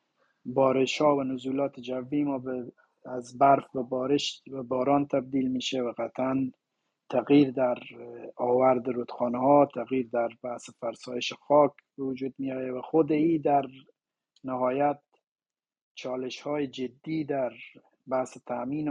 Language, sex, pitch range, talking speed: Persian, male, 125-150 Hz, 125 wpm